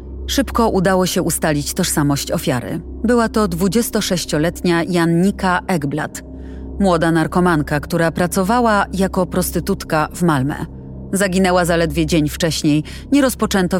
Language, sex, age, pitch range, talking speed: Polish, female, 30-49, 150-195 Hz, 110 wpm